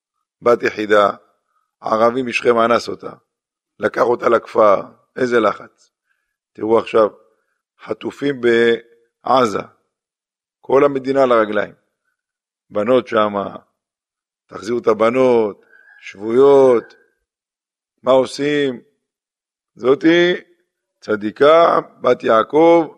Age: 50-69